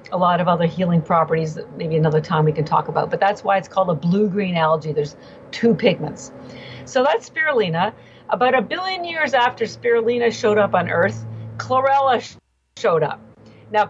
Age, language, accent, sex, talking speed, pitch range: 50-69, English, American, female, 180 wpm, 170-230 Hz